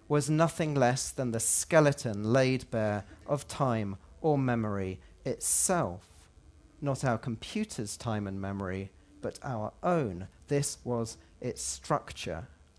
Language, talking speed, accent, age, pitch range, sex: English, 120 wpm, British, 40-59, 105-145 Hz, male